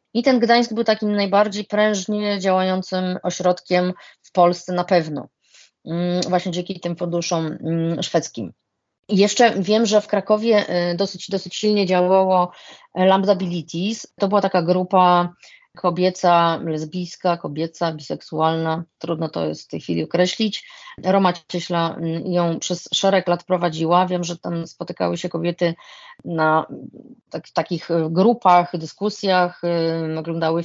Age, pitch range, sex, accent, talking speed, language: 30-49, 170-195 Hz, female, native, 120 wpm, Polish